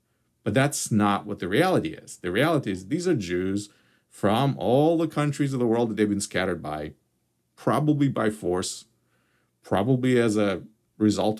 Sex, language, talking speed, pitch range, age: male, English, 170 wpm, 100-135 Hz, 40-59